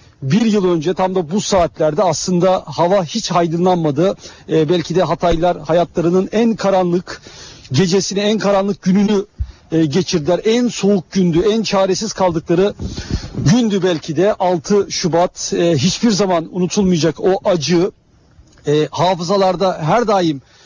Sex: male